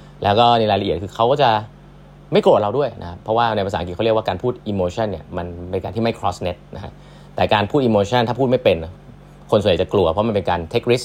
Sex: male